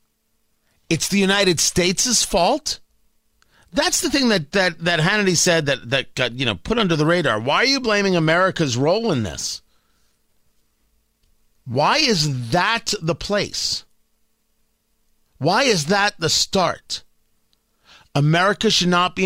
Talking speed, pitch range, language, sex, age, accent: 135 wpm, 160-210 Hz, English, male, 40-59, American